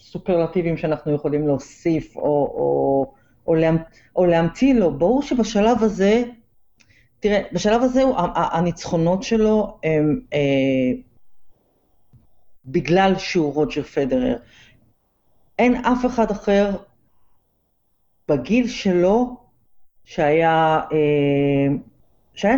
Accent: native